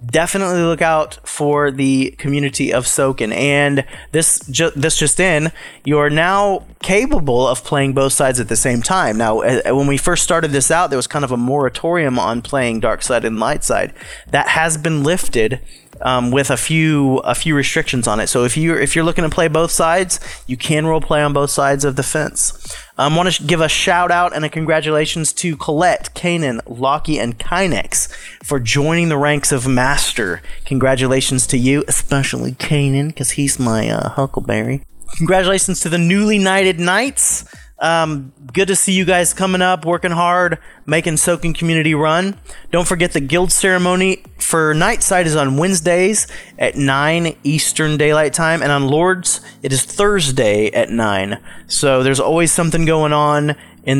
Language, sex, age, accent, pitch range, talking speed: English, male, 30-49, American, 135-175 Hz, 180 wpm